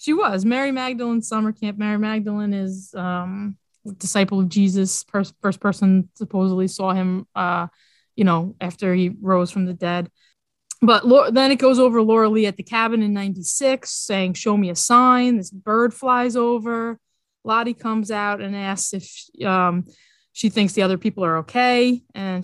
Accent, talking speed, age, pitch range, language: American, 170 wpm, 20-39, 195-255 Hz, English